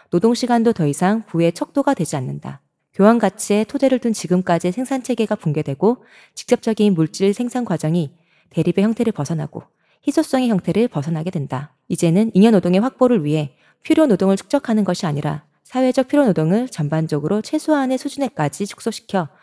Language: Korean